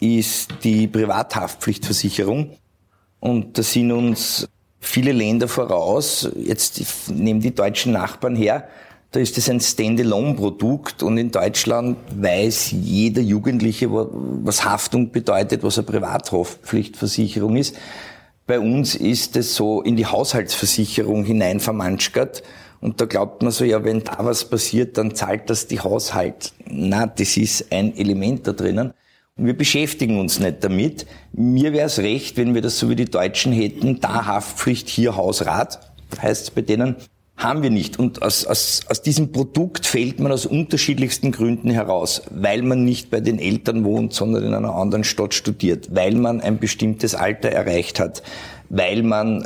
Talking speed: 155 wpm